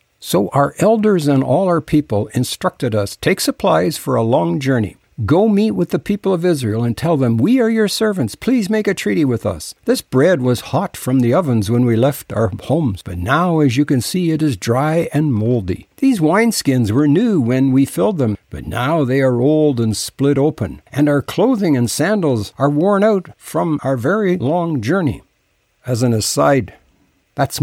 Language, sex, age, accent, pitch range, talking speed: English, male, 60-79, American, 115-160 Hz, 200 wpm